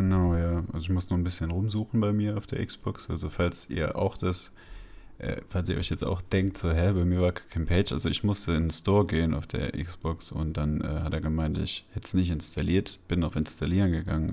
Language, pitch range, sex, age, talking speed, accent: German, 85-100 Hz, male, 30-49, 245 wpm, German